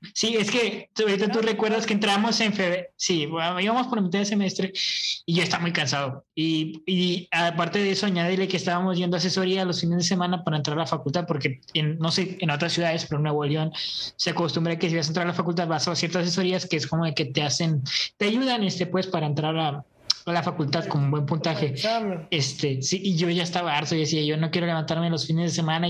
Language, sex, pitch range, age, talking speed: Spanish, male, 165-200 Hz, 20-39, 245 wpm